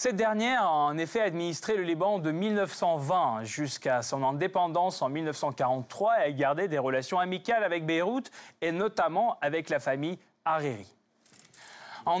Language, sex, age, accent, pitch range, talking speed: French, male, 30-49, French, 155-215 Hz, 150 wpm